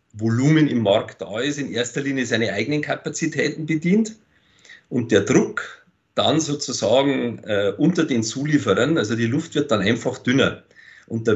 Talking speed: 160 wpm